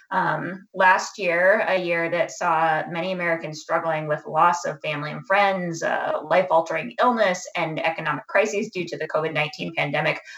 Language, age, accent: English, 20-39, American